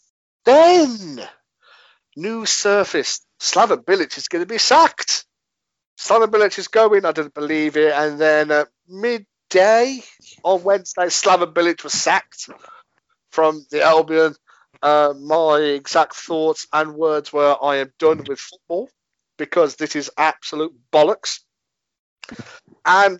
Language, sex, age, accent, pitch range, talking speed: English, male, 50-69, British, 140-185 Hz, 125 wpm